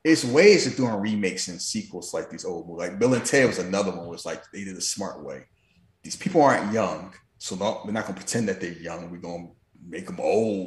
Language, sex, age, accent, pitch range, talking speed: English, male, 30-49, American, 100-145 Hz, 255 wpm